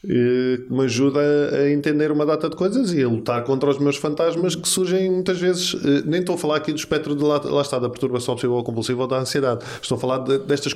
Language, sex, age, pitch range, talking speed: Portuguese, male, 20-39, 135-180 Hz, 240 wpm